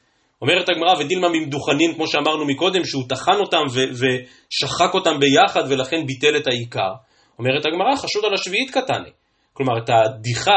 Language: Hebrew